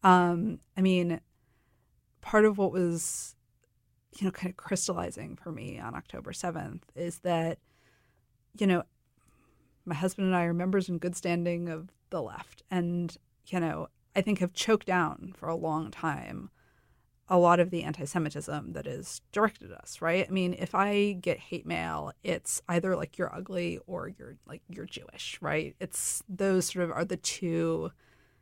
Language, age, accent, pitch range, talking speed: English, 30-49, American, 165-195 Hz, 170 wpm